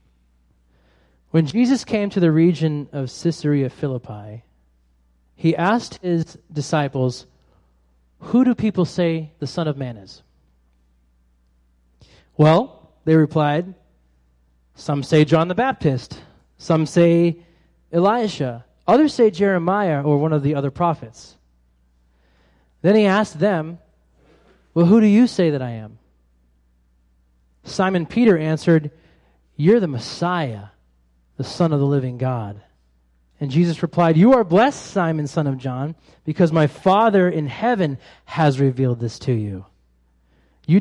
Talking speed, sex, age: 130 wpm, male, 20-39